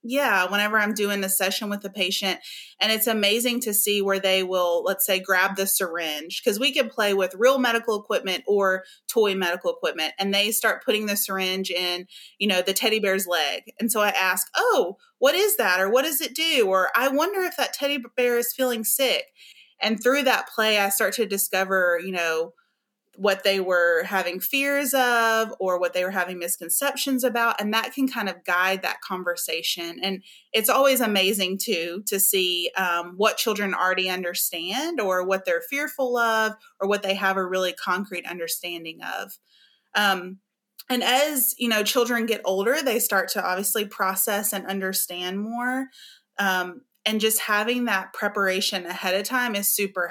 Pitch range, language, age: 185-240 Hz, English, 30-49